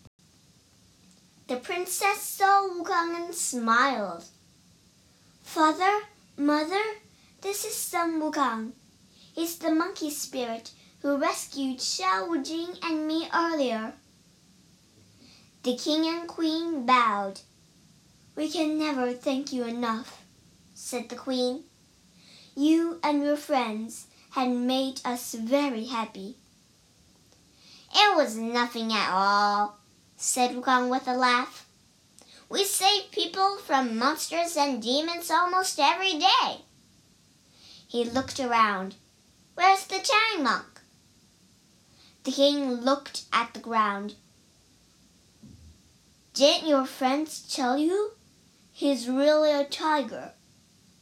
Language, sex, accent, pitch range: Chinese, male, American, 245-340 Hz